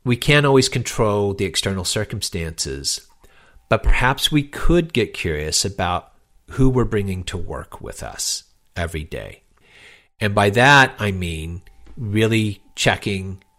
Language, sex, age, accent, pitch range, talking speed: English, male, 40-59, American, 90-125 Hz, 130 wpm